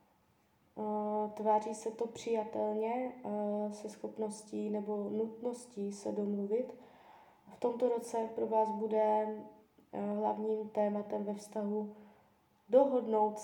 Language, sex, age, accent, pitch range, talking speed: Czech, female, 20-39, native, 210-230 Hz, 95 wpm